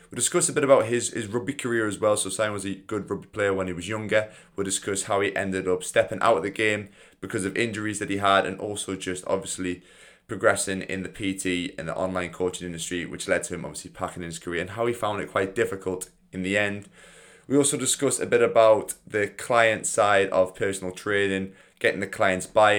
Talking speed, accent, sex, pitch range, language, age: 225 wpm, British, male, 90-110 Hz, English, 20-39